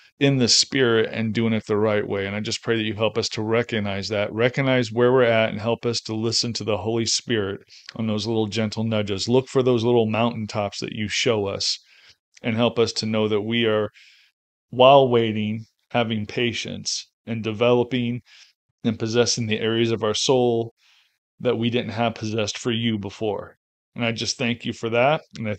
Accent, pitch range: American, 110-125 Hz